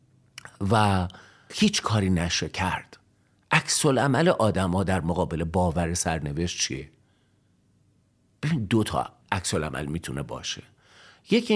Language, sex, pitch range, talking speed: Persian, male, 90-125 Hz, 105 wpm